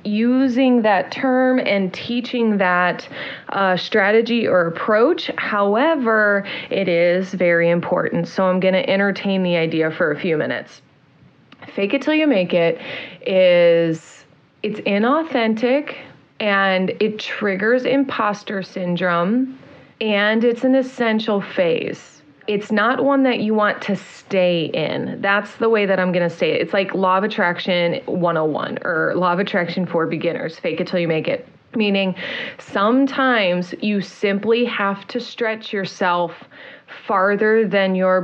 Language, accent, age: English, American, 30-49